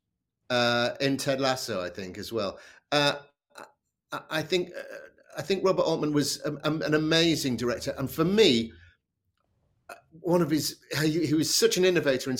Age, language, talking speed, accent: 50-69, English, 170 wpm, British